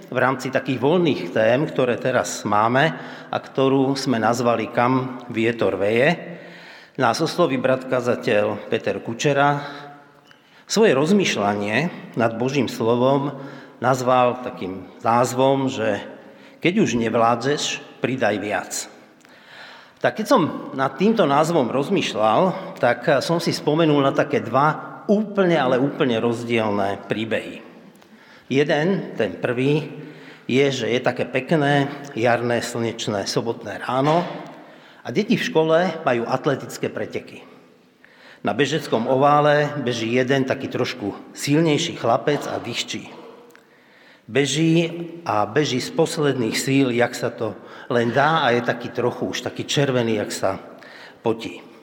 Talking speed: 120 wpm